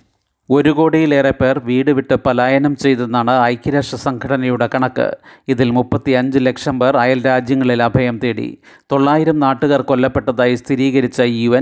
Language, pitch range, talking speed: Malayalam, 125-140 Hz, 125 wpm